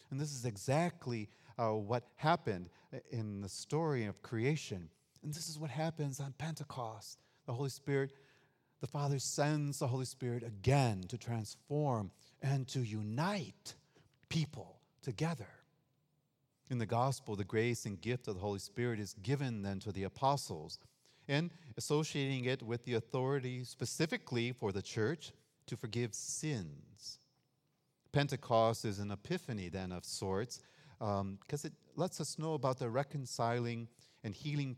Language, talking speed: English, 145 wpm